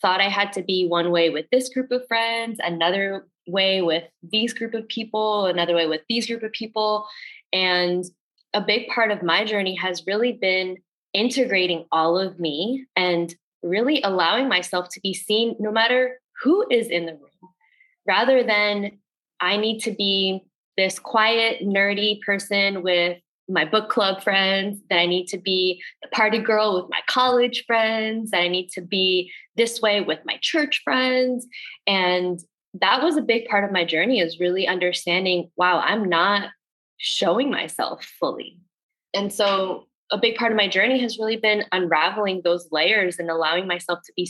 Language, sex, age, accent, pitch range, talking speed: English, female, 20-39, American, 180-220 Hz, 175 wpm